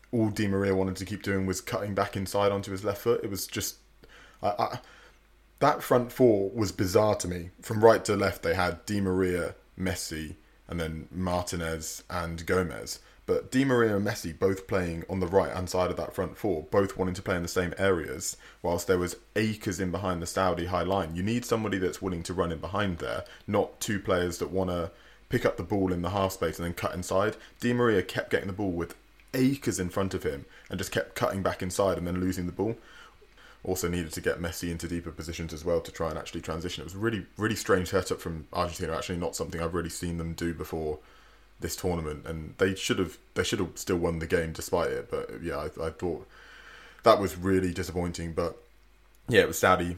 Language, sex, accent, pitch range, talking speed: English, male, British, 85-100 Hz, 220 wpm